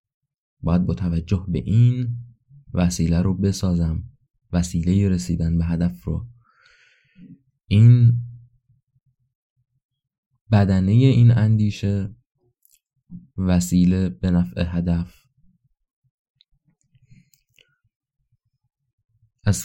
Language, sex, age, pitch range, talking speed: Persian, male, 20-39, 95-125 Hz, 65 wpm